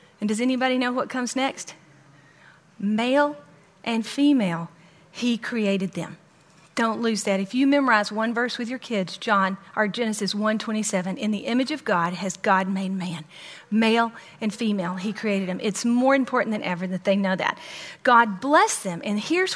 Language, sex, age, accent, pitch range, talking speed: English, female, 40-59, American, 195-255 Hz, 175 wpm